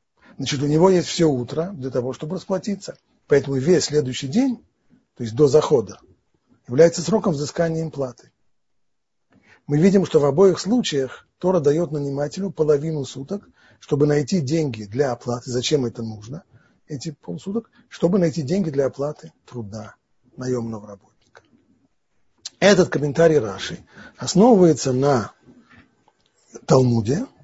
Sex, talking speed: male, 125 wpm